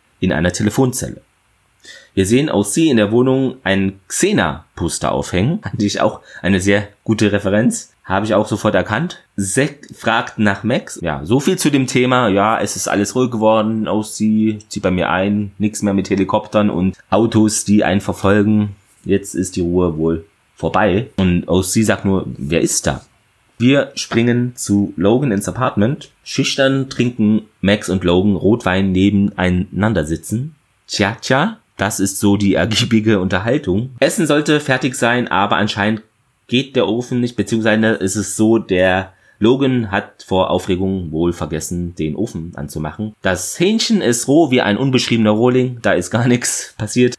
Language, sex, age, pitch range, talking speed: German, male, 30-49, 95-120 Hz, 165 wpm